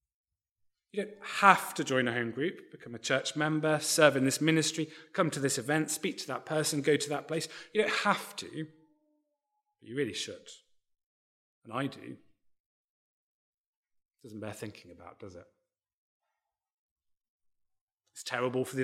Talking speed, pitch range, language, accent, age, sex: 160 wpm, 125-175 Hz, English, British, 30-49, male